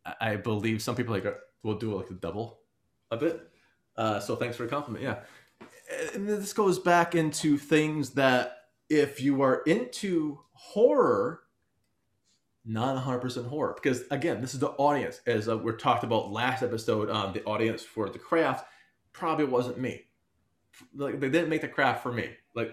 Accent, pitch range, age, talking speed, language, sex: American, 115-155 Hz, 30-49, 170 wpm, English, male